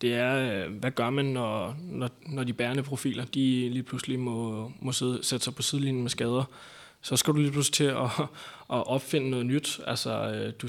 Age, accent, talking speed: 20-39, native, 200 wpm